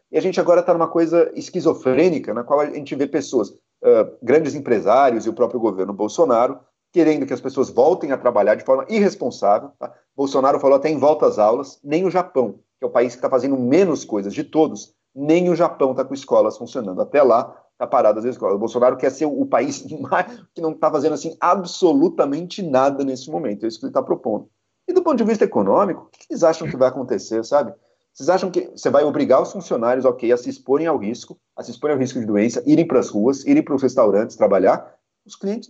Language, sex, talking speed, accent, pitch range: Portuguese, male, 225 wpm, Brazilian, 130-190 Hz